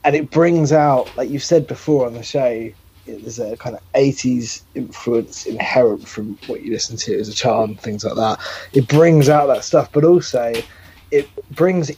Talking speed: 190 wpm